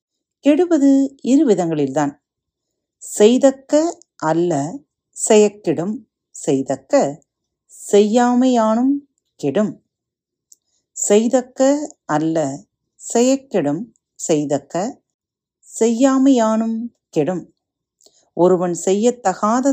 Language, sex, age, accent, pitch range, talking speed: Tamil, female, 40-59, native, 145-245 Hz, 50 wpm